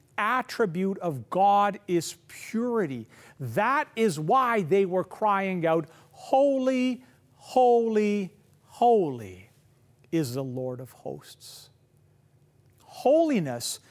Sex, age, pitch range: male, 50-69, 135-210 Hz